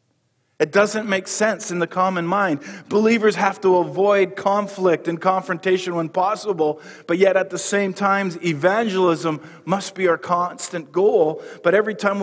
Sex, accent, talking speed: male, American, 155 wpm